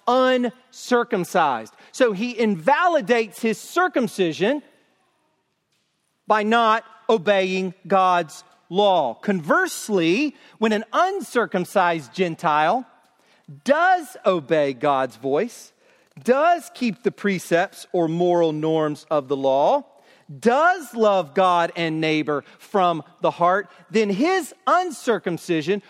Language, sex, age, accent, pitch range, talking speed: English, male, 40-59, American, 195-270 Hz, 95 wpm